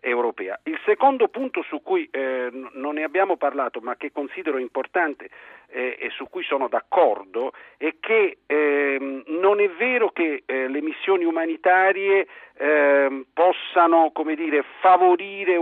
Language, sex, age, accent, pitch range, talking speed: Italian, male, 50-69, native, 155-220 Hz, 140 wpm